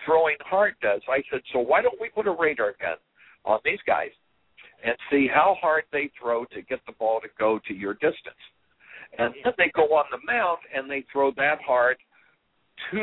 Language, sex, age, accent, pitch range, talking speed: English, male, 60-79, American, 125-170 Hz, 205 wpm